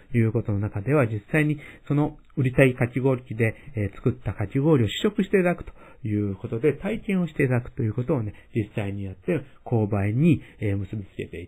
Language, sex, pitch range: Japanese, male, 105-155 Hz